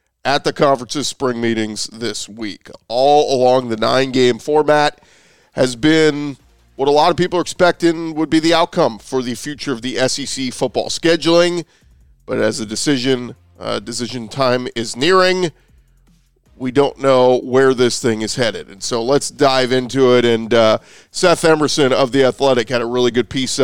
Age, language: 40-59, English